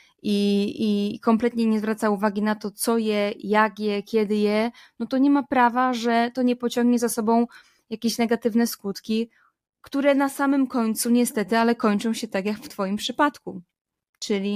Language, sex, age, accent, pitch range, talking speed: Polish, female, 20-39, native, 200-235 Hz, 175 wpm